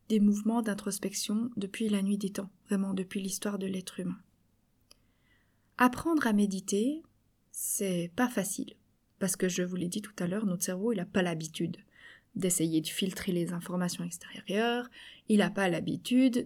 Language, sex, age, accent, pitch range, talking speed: French, female, 20-39, French, 190-235 Hz, 165 wpm